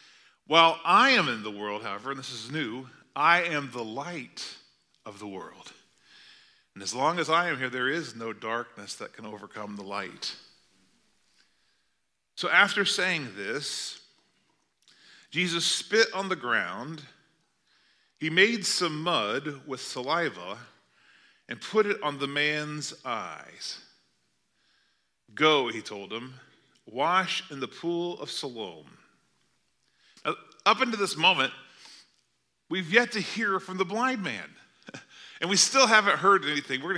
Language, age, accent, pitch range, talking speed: English, 40-59, American, 130-190 Hz, 140 wpm